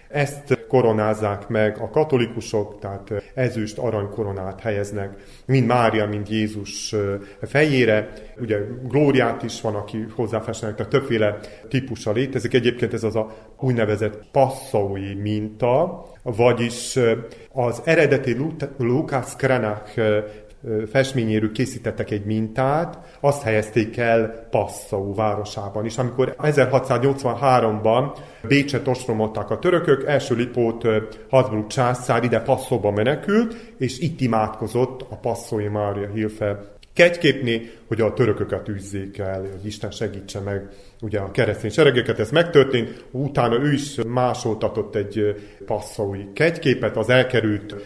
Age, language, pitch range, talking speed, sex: 30-49, Hungarian, 105-130 Hz, 110 wpm, male